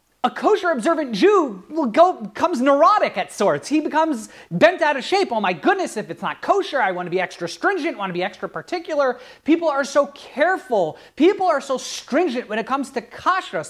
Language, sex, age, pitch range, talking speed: English, male, 30-49, 235-310 Hz, 205 wpm